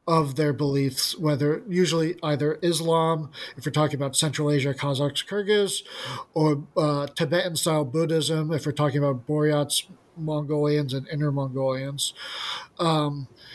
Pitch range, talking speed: 145-170 Hz, 130 wpm